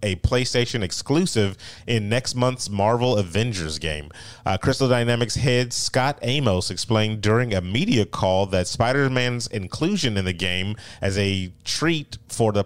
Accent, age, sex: American, 30-49, male